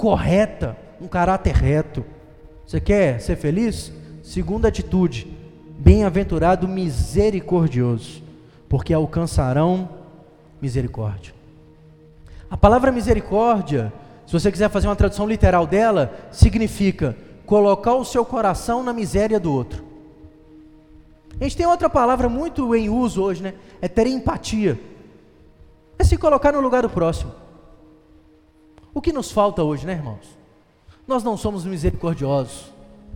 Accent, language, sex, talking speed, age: Brazilian, Portuguese, male, 120 wpm, 20-39